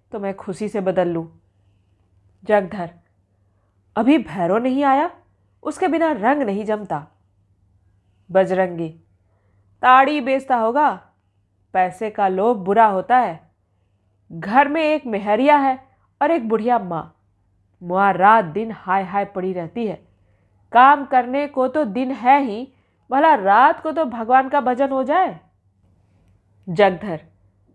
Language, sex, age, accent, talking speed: Hindi, female, 40-59, native, 130 wpm